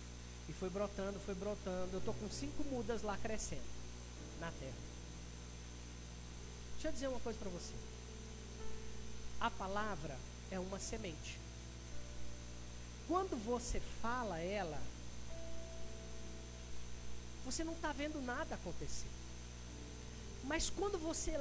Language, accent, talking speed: Portuguese, Brazilian, 110 wpm